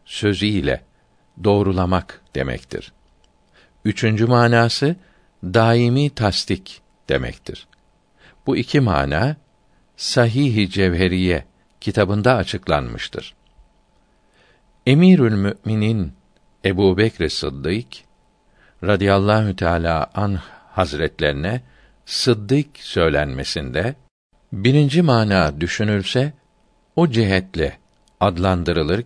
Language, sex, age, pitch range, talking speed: Turkish, male, 60-79, 85-120 Hz, 65 wpm